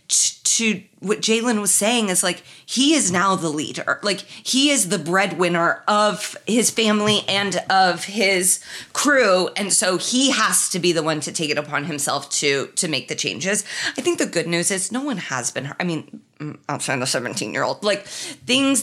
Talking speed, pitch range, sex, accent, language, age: 200 wpm, 170-235 Hz, female, American, English, 20-39